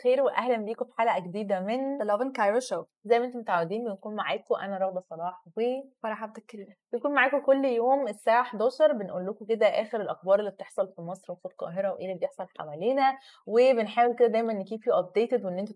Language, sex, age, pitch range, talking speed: Arabic, female, 20-39, 195-245 Hz, 185 wpm